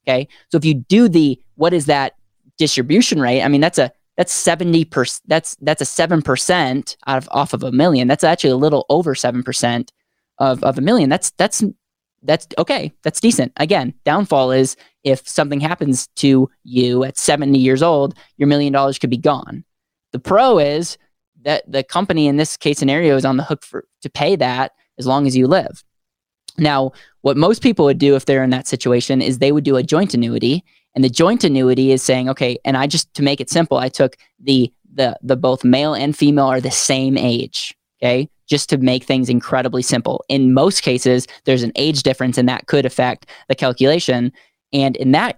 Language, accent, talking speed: English, American, 200 wpm